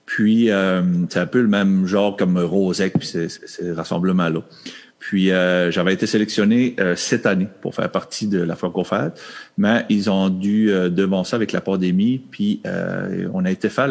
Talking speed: 200 wpm